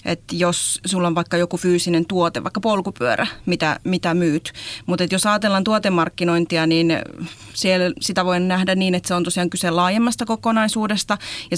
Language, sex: Finnish, female